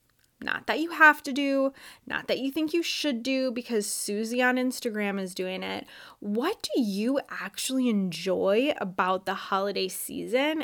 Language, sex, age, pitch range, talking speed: English, female, 20-39, 200-270 Hz, 165 wpm